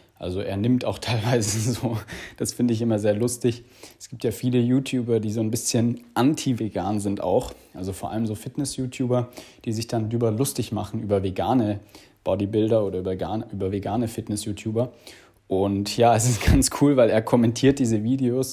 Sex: male